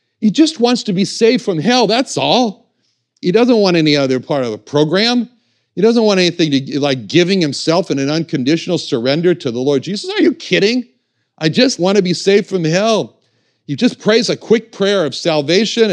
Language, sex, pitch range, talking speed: English, male, 135-205 Hz, 200 wpm